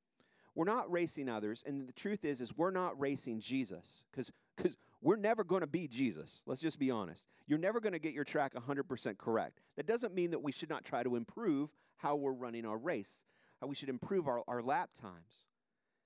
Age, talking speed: 40-59, 210 wpm